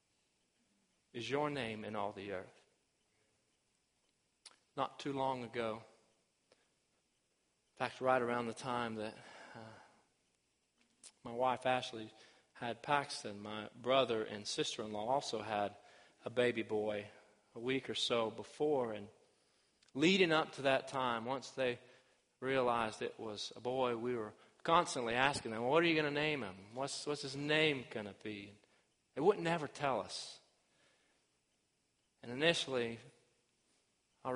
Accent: American